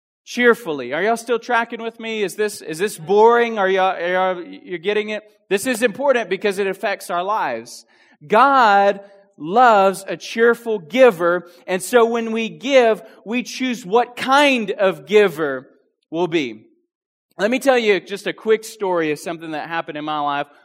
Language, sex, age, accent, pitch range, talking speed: English, male, 20-39, American, 145-200 Hz, 175 wpm